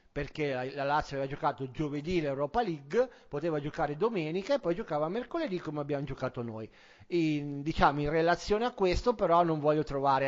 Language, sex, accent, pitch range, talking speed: Italian, male, native, 150-200 Hz, 170 wpm